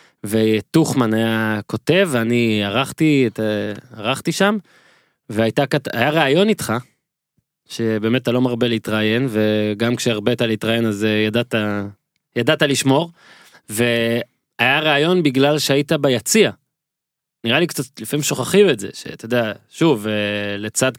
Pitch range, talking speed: 115-150 Hz, 120 wpm